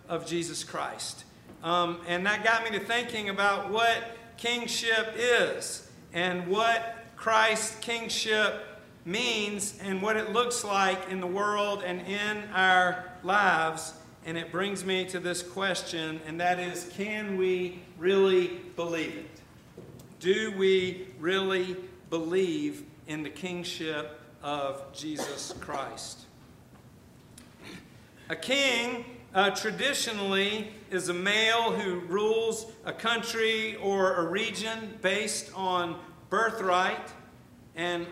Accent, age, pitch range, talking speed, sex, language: American, 50-69, 175-210 Hz, 115 wpm, male, English